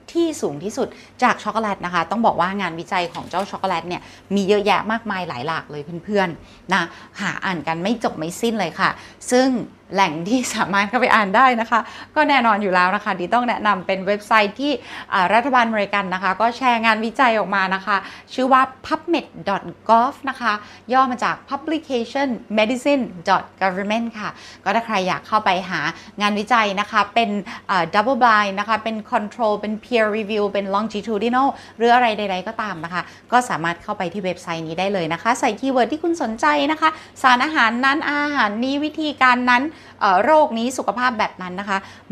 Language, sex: Thai, female